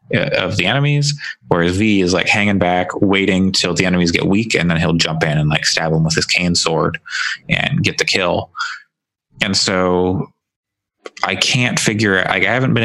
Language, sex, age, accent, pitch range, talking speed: English, male, 20-39, American, 85-125 Hz, 195 wpm